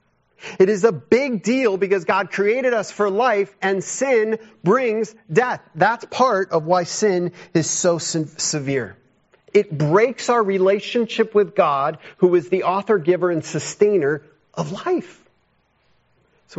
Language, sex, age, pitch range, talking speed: English, male, 40-59, 130-200 Hz, 140 wpm